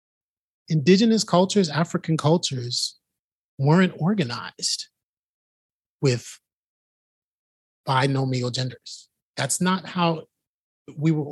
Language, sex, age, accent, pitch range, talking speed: English, male, 30-49, American, 140-190 Hz, 75 wpm